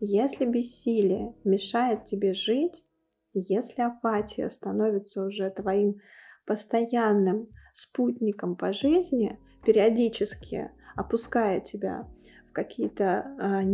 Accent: native